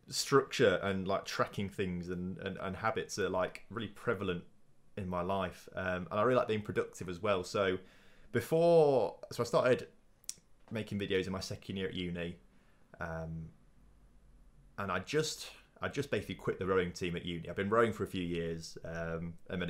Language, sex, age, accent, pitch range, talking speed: English, male, 20-39, British, 85-105 Hz, 185 wpm